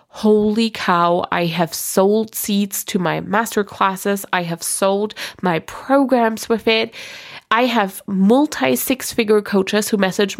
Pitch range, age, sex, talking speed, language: 190-230 Hz, 20-39, female, 145 wpm, English